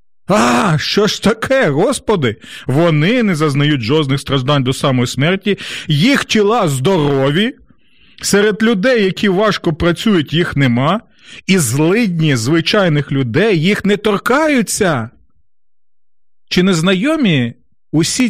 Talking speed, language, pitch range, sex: 110 wpm, Ukrainian, 140-200 Hz, male